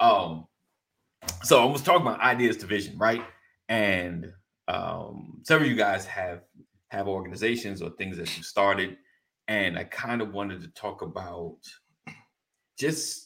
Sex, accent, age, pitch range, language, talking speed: male, American, 30-49, 85-105 Hz, English, 150 wpm